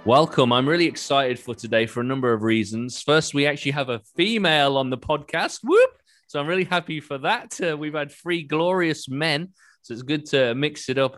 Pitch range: 105-135 Hz